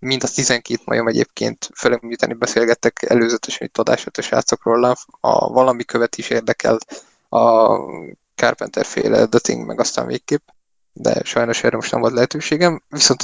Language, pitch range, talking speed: Hungarian, 120-135 Hz, 145 wpm